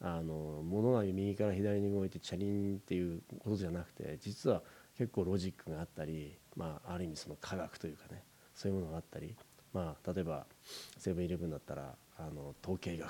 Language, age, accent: Japanese, 40-59, native